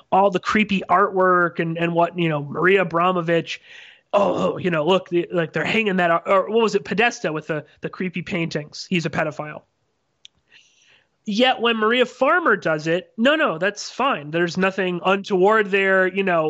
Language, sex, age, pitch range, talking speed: English, male, 30-49, 170-215 Hz, 175 wpm